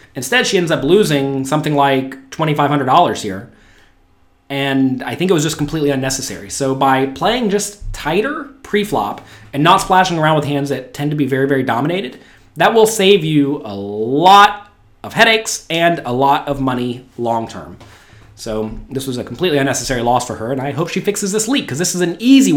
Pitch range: 130-185 Hz